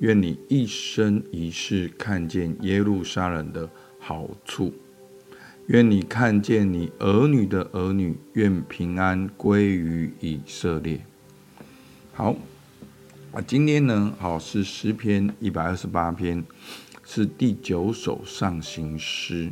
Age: 50-69